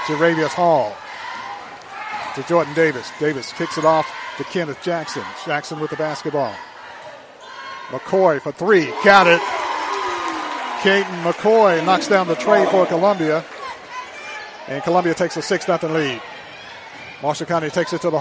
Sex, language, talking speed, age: male, English, 135 wpm, 50-69